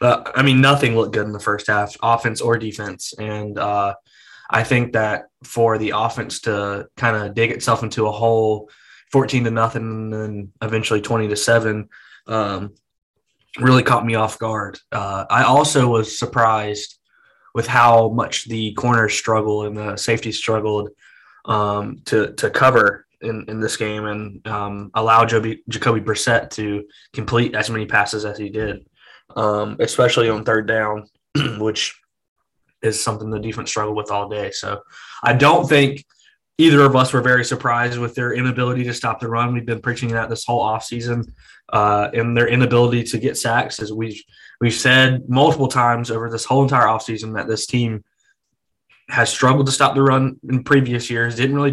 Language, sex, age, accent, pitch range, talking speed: English, male, 20-39, American, 110-125 Hz, 175 wpm